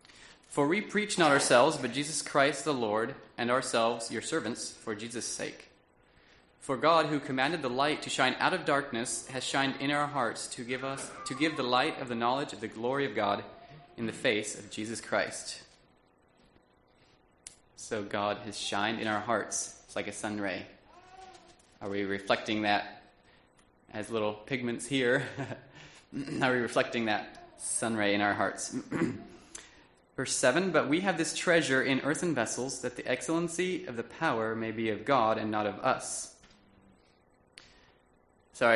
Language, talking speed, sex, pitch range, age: English, 165 wpm, male, 100-130 Hz, 20-39